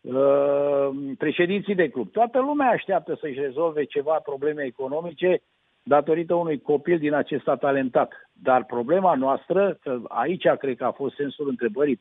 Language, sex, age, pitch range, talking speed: Romanian, male, 50-69, 140-200 Hz, 135 wpm